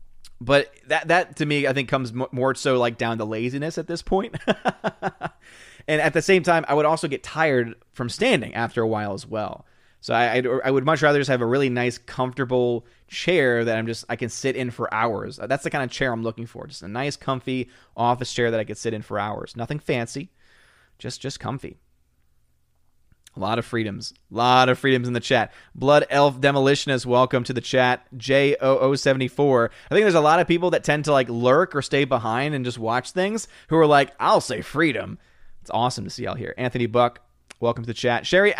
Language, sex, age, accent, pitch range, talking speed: English, male, 30-49, American, 120-155 Hz, 220 wpm